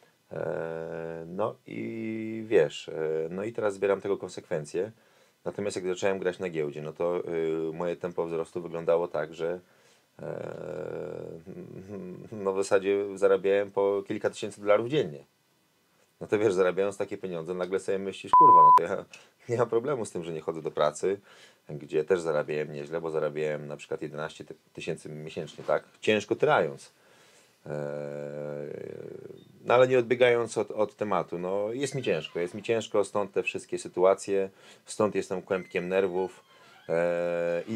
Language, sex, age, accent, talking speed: Polish, male, 30-49, native, 150 wpm